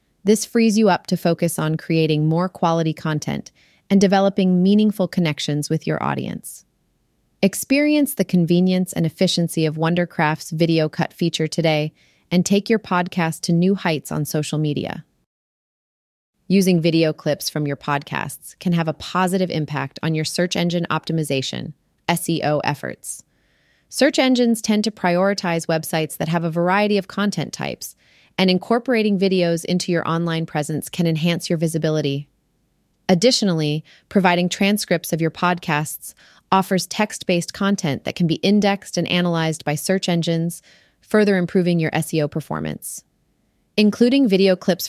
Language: English